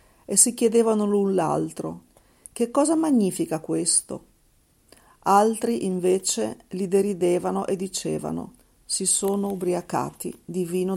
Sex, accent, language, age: female, native, Italian, 40-59